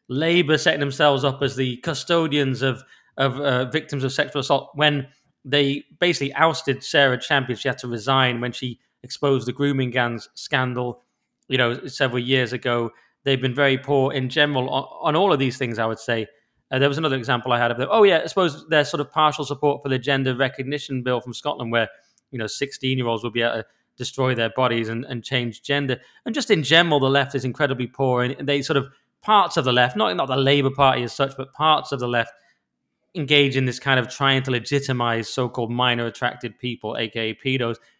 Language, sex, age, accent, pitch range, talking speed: English, male, 20-39, British, 125-145 Hz, 215 wpm